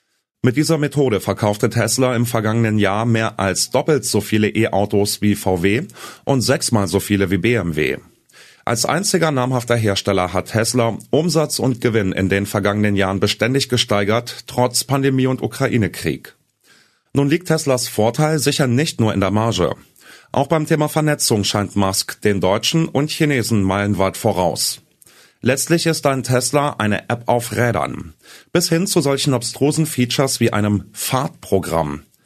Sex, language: male, German